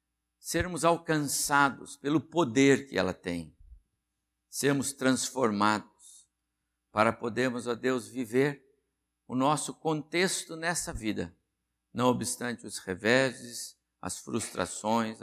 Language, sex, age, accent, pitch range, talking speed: Portuguese, male, 60-79, Brazilian, 85-125 Hz, 100 wpm